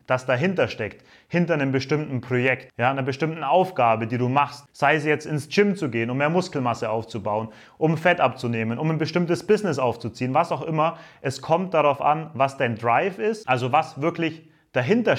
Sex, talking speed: male, 190 wpm